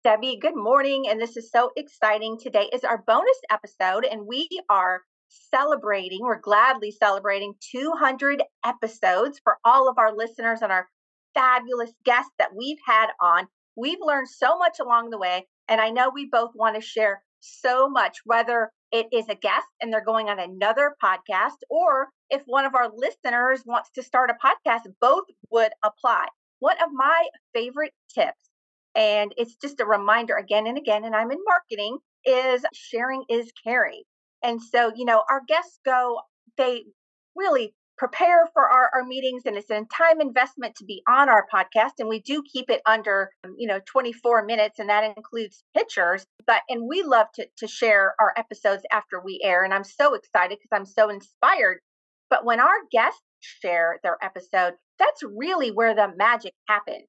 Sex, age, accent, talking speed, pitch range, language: female, 40-59, American, 180 wpm, 215-270 Hz, English